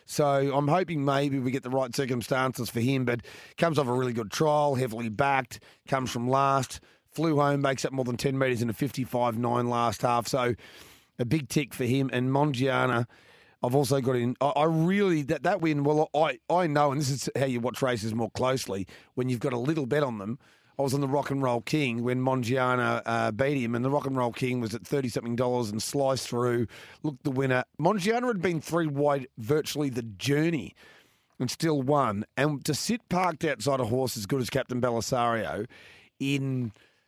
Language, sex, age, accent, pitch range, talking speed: English, male, 30-49, Australian, 125-145 Hz, 205 wpm